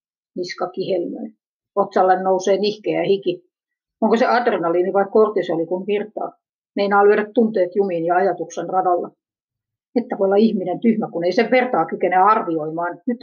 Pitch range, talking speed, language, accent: 180-235 Hz, 150 wpm, Finnish, native